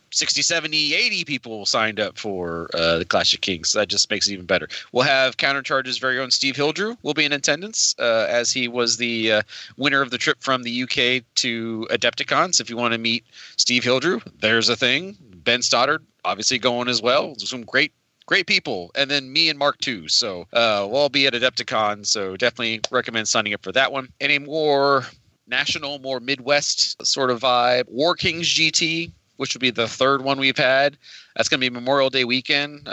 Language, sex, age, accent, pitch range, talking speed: English, male, 30-49, American, 110-140 Hz, 205 wpm